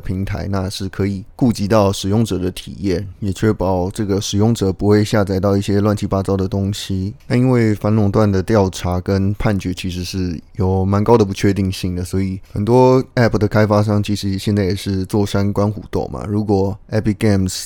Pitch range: 95-105 Hz